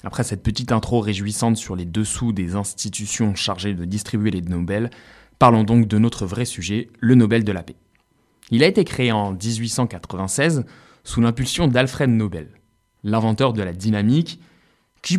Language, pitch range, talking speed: French, 95-120 Hz, 160 wpm